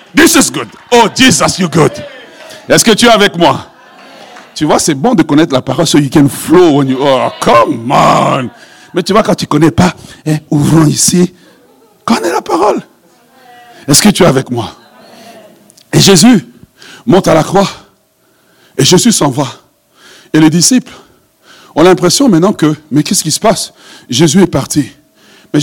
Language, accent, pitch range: French, French, 165-235 Hz